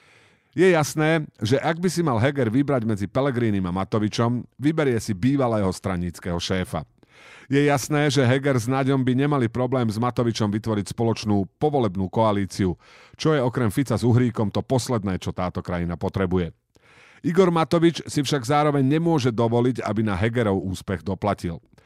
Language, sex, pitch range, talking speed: Slovak, male, 105-135 Hz, 155 wpm